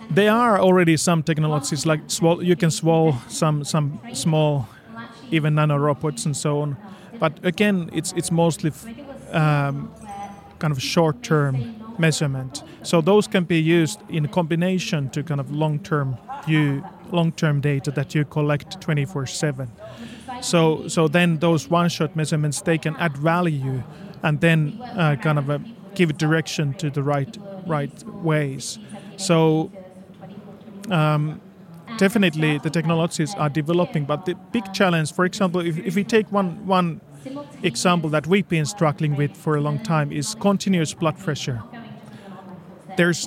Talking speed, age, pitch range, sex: 150 wpm, 30-49, 150-185 Hz, male